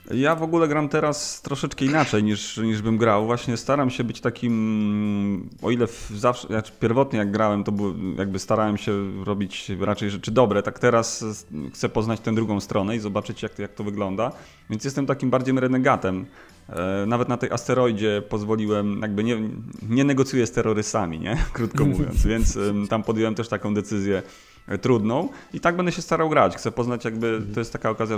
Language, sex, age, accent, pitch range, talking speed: Polish, male, 30-49, native, 100-120 Hz, 175 wpm